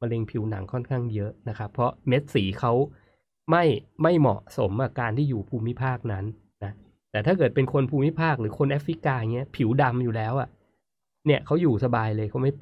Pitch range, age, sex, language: 110-135 Hz, 20-39, male, Thai